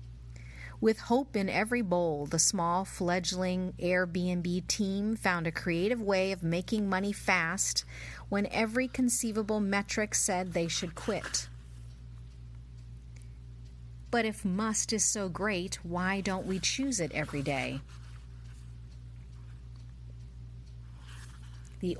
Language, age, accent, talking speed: English, 40-59, American, 110 wpm